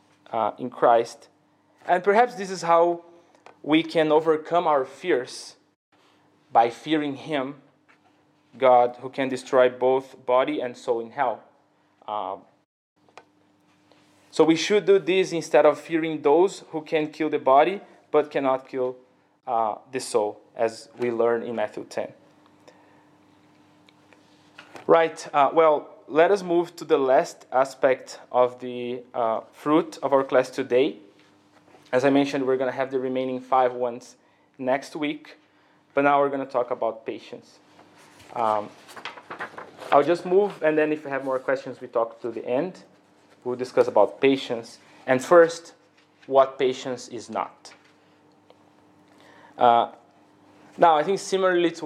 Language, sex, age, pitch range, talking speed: English, male, 20-39, 125-160 Hz, 145 wpm